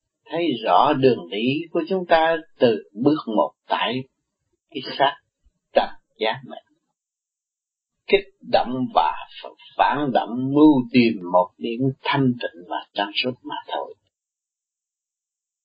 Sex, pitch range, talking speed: male, 125-200 Hz, 125 wpm